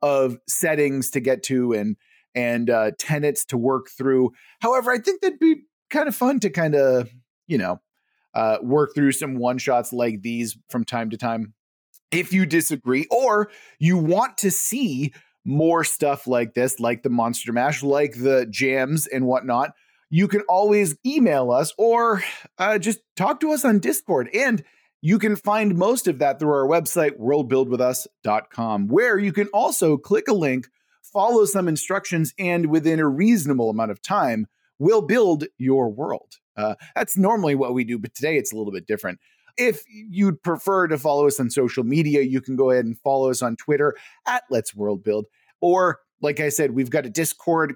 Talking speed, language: 185 wpm, English